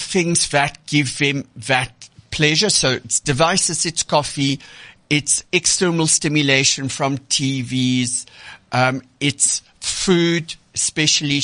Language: English